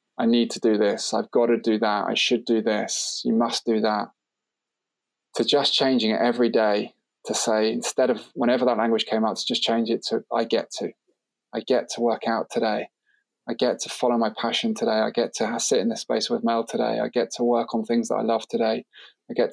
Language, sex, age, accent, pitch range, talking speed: English, male, 20-39, British, 115-155 Hz, 235 wpm